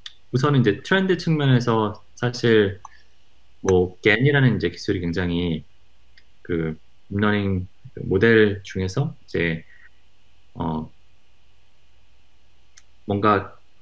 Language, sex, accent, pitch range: Korean, male, native, 85-120 Hz